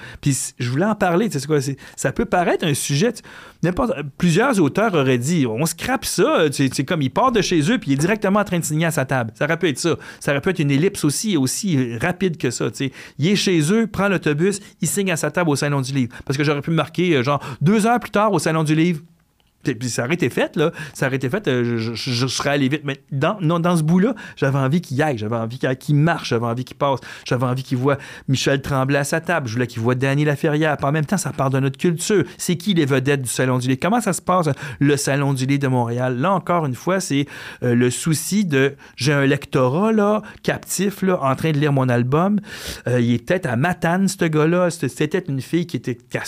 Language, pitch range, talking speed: French, 135-175 Hz, 255 wpm